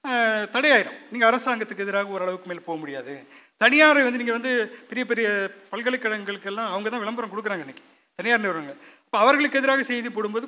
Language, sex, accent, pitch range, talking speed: Tamil, male, native, 200-265 Hz, 155 wpm